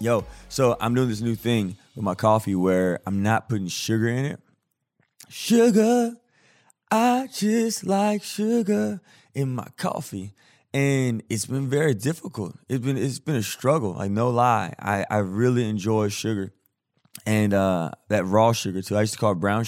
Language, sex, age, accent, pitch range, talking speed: English, male, 20-39, American, 95-125 Hz, 170 wpm